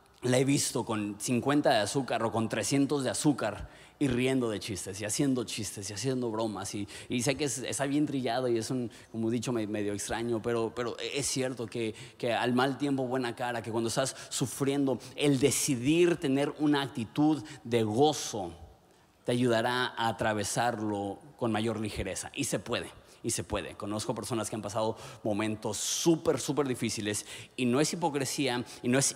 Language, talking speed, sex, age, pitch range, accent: Spanish, 185 wpm, male, 30-49, 110-135 Hz, Mexican